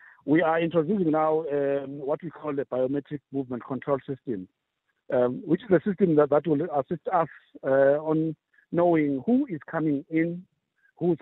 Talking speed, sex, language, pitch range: 165 wpm, male, English, 140-180 Hz